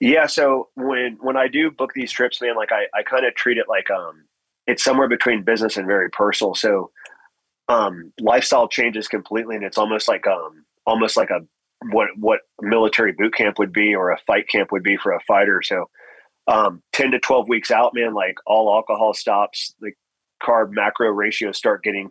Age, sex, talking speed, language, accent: 30-49, male, 200 wpm, English, American